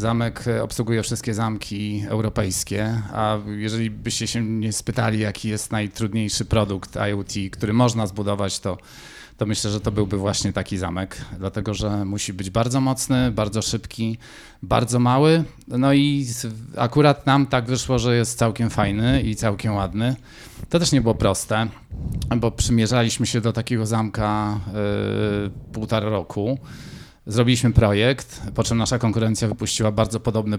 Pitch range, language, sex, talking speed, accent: 105-120 Hz, Polish, male, 145 wpm, native